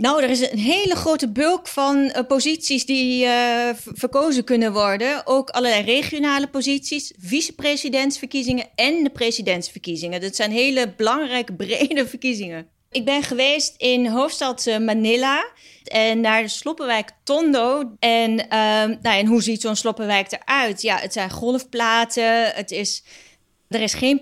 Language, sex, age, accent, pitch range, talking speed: Dutch, female, 30-49, Dutch, 215-255 Hz, 140 wpm